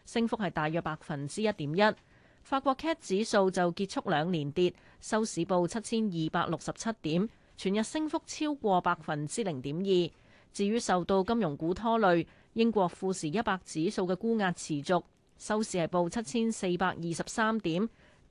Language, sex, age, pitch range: Chinese, female, 30-49, 170-225 Hz